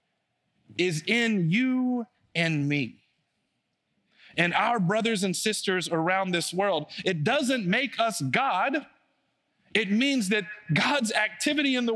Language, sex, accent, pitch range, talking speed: English, male, American, 200-255 Hz, 125 wpm